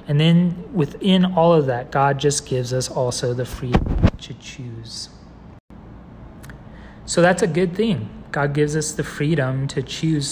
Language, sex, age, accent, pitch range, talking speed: English, male, 30-49, American, 135-155 Hz, 155 wpm